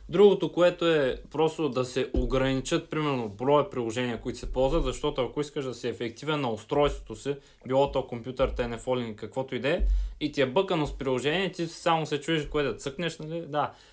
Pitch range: 130-165 Hz